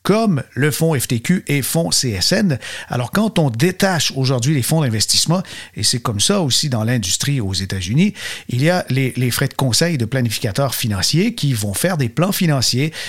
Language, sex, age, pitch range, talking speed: French, male, 50-69, 125-160 Hz, 190 wpm